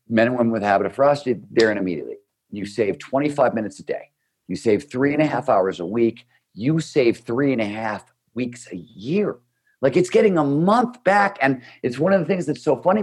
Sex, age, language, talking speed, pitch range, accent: male, 50-69, English, 230 wpm, 100-150 Hz, American